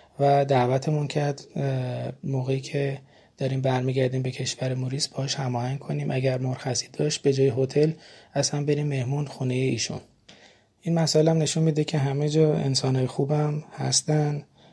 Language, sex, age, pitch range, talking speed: Persian, male, 20-39, 135-155 Hz, 145 wpm